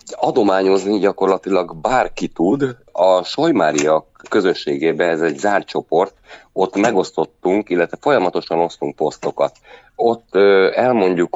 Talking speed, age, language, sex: 100 wpm, 30-49, Hungarian, male